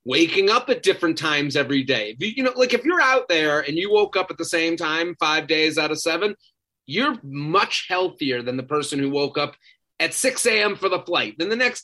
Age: 30-49